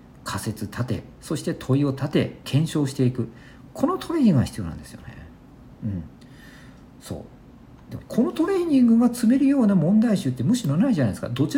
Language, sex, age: Japanese, male, 50-69